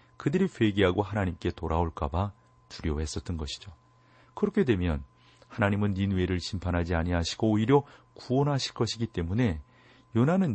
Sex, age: male, 40-59